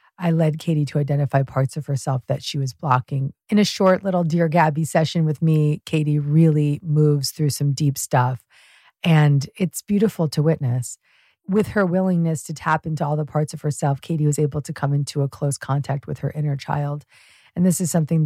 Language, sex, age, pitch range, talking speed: English, female, 40-59, 140-175 Hz, 200 wpm